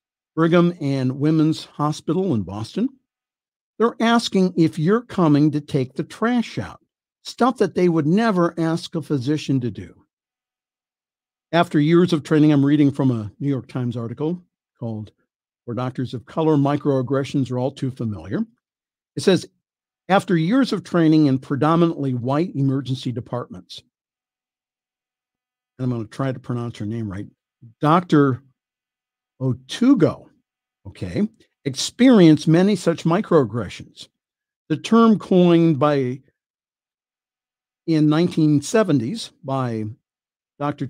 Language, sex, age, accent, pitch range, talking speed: English, male, 50-69, American, 130-170 Hz, 125 wpm